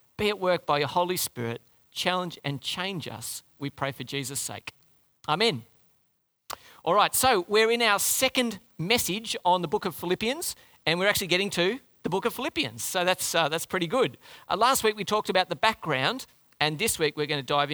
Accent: Australian